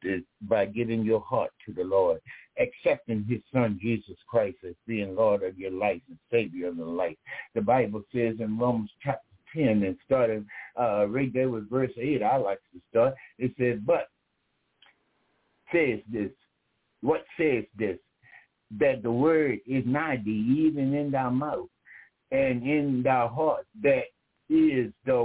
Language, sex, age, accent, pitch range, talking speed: English, male, 60-79, American, 125-165 Hz, 160 wpm